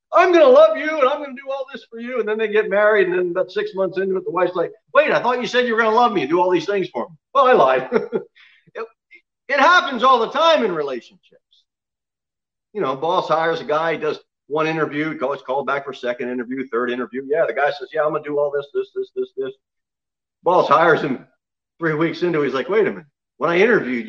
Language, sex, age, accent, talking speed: English, male, 50-69, American, 260 wpm